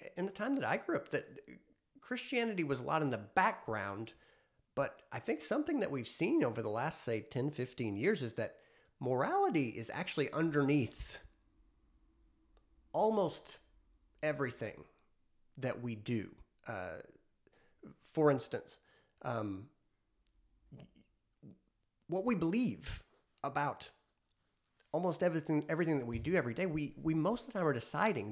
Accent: American